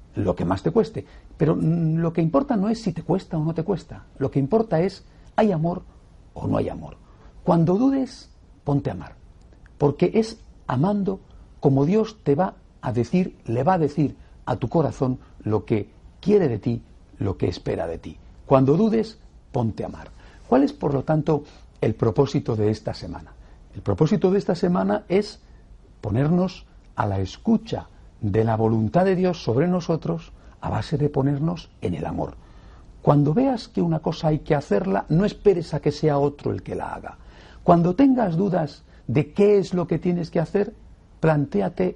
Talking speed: 185 wpm